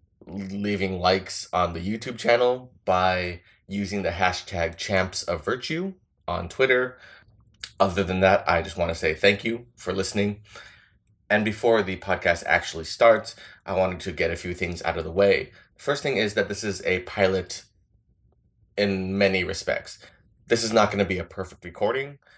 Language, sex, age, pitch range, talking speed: English, male, 20-39, 90-105 Hz, 170 wpm